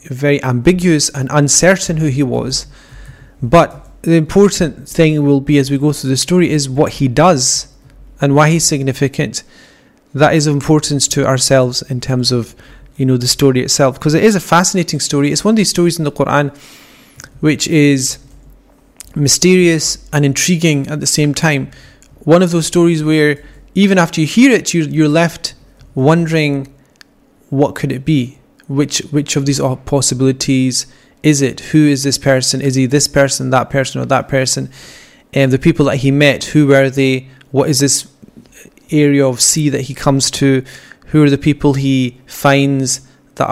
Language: English